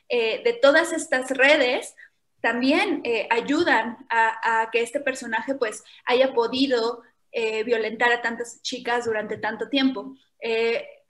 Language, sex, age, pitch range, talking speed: Spanish, female, 20-39, 235-295 Hz, 135 wpm